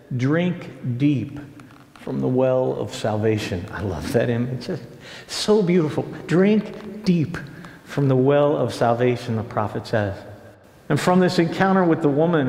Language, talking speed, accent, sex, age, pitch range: English, 145 wpm, American, male, 50-69, 120-165 Hz